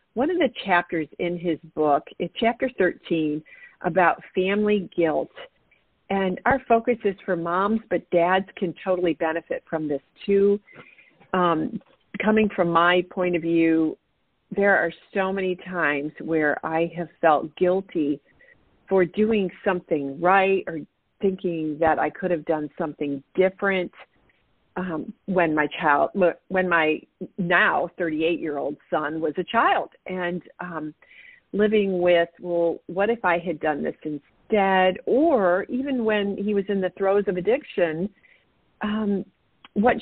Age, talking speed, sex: 50-69, 140 wpm, female